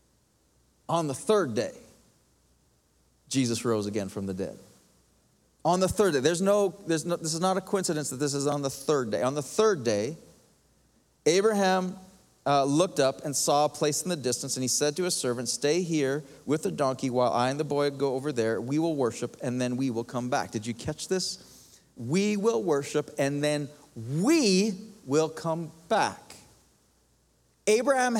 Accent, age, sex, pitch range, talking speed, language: American, 40-59, male, 120-185 Hz, 185 wpm, English